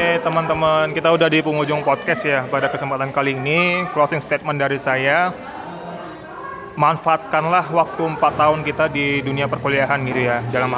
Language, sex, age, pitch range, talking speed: Indonesian, male, 20-39, 135-155 Hz, 150 wpm